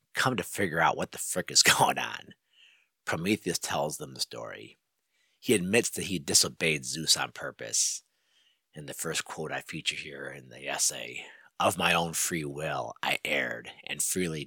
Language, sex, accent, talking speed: English, male, American, 175 wpm